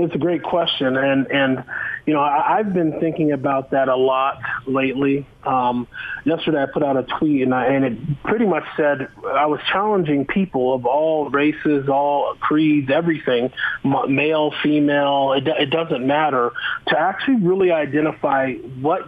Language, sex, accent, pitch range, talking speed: English, male, American, 130-155 Hz, 155 wpm